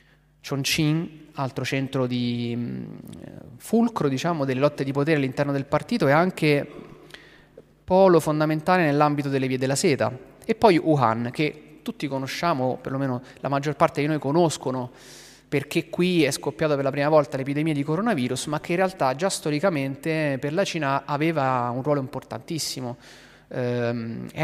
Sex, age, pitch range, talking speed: male, 30-49, 130-155 Hz, 150 wpm